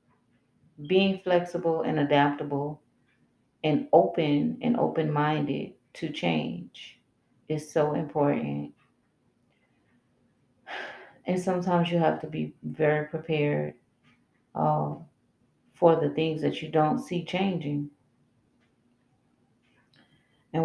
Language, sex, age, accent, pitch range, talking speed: English, female, 30-49, American, 145-180 Hz, 95 wpm